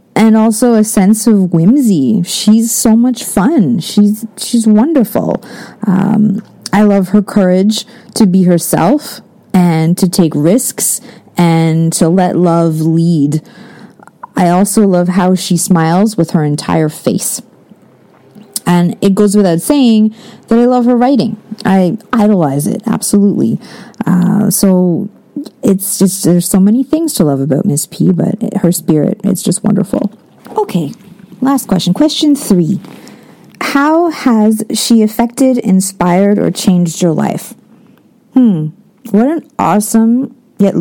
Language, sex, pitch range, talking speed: English, female, 180-230 Hz, 135 wpm